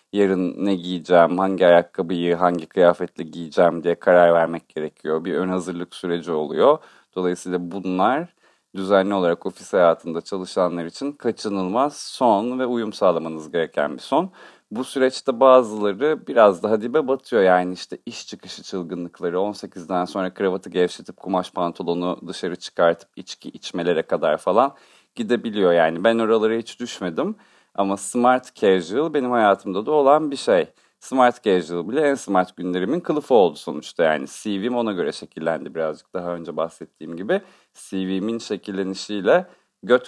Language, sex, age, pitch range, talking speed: Turkish, male, 40-59, 90-120 Hz, 140 wpm